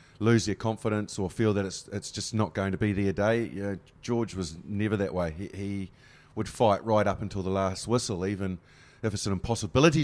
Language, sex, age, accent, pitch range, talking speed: English, male, 30-49, Australian, 95-110 Hz, 220 wpm